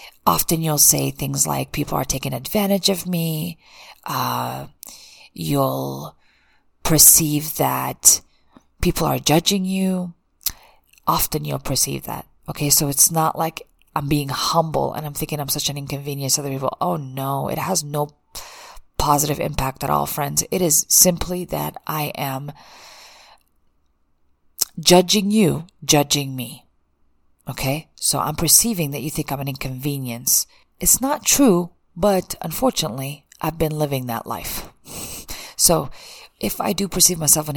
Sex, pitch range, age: female, 135-165 Hz, 30-49